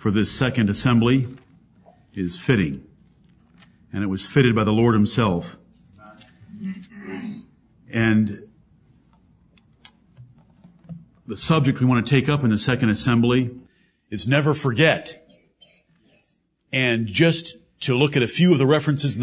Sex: male